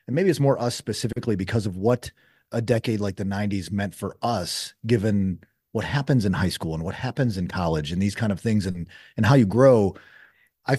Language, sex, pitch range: English, male, 105-135 Hz